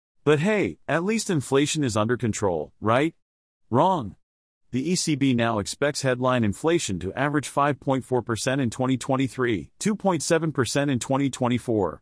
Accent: American